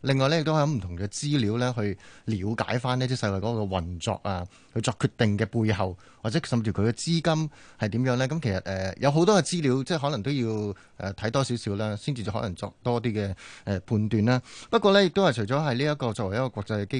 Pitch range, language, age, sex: 110-150 Hz, Chinese, 30-49, male